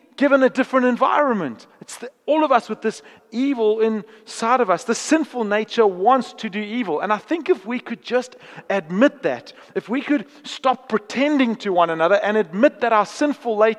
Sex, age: male, 40-59